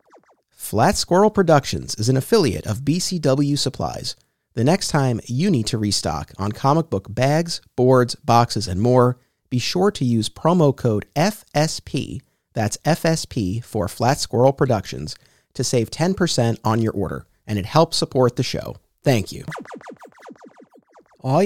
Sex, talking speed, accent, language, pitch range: male, 145 wpm, American, English, 115-160 Hz